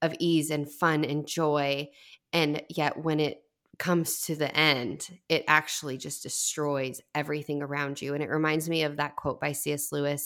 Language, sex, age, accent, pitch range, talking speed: English, female, 20-39, American, 145-165 Hz, 180 wpm